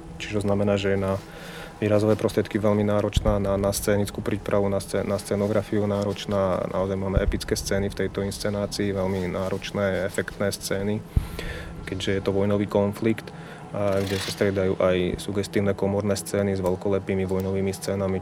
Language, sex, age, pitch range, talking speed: Slovak, male, 30-49, 95-105 Hz, 150 wpm